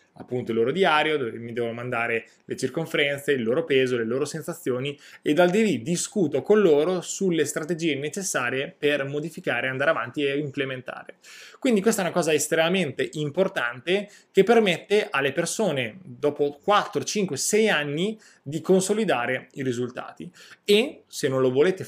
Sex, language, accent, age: male, Italian, native, 20-39